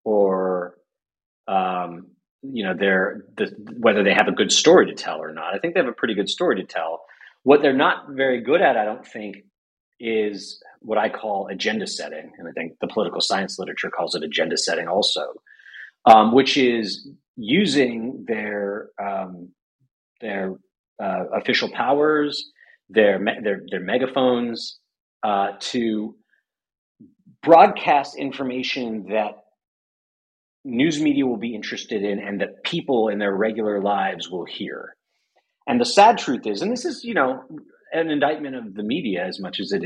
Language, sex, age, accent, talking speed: English, male, 40-59, American, 160 wpm